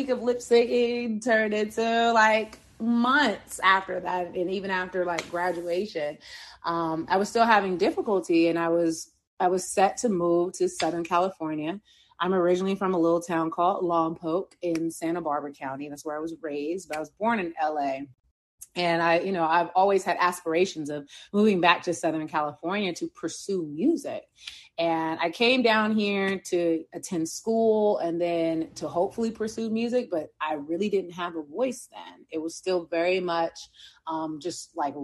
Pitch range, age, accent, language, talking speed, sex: 160-195 Hz, 30-49, American, English, 175 wpm, female